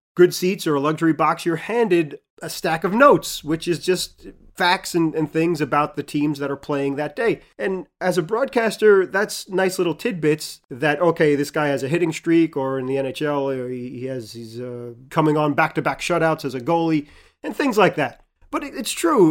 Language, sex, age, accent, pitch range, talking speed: English, male, 30-49, American, 140-175 Hz, 200 wpm